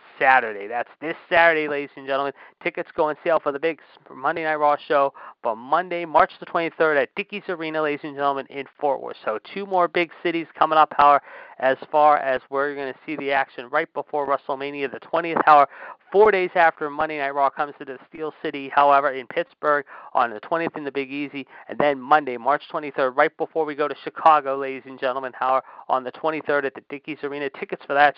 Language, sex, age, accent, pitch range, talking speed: English, male, 40-59, American, 135-160 Hz, 215 wpm